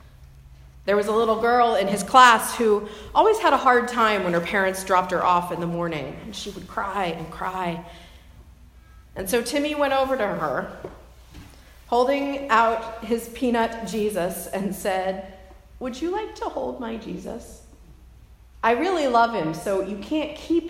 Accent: American